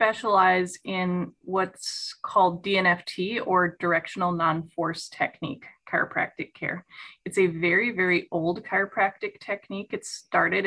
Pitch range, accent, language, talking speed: 175-195 Hz, American, English, 110 wpm